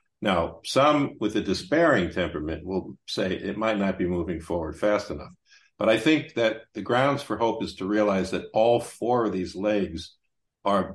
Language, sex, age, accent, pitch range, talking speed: English, male, 50-69, American, 95-110 Hz, 185 wpm